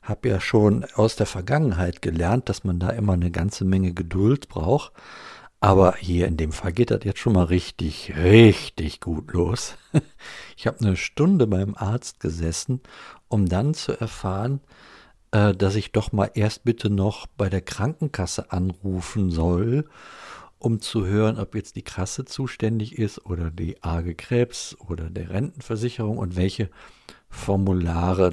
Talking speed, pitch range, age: 155 wpm, 90-115 Hz, 50-69